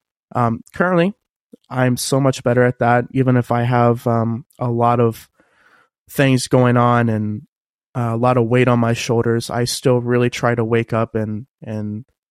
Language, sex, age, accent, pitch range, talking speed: English, male, 20-39, American, 115-130 Hz, 180 wpm